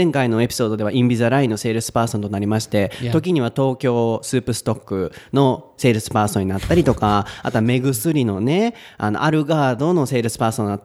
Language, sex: Japanese, male